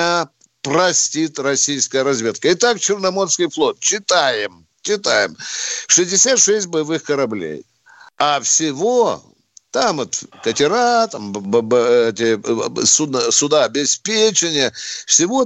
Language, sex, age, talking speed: Russian, male, 60-79, 95 wpm